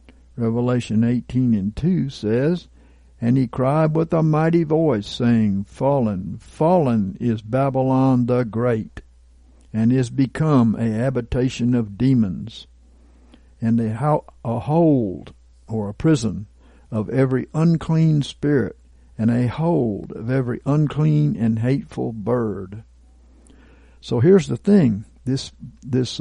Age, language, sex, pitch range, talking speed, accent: 60-79, English, male, 95-135 Hz, 115 wpm, American